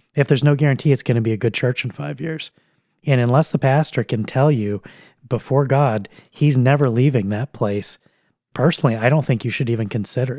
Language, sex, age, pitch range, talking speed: English, male, 30-49, 115-140 Hz, 210 wpm